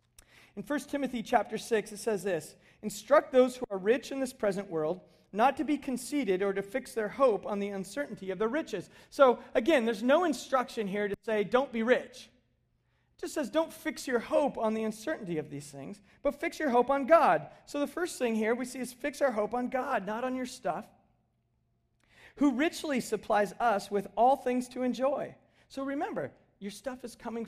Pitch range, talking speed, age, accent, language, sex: 195-255 Hz, 205 wpm, 40-59, American, English, male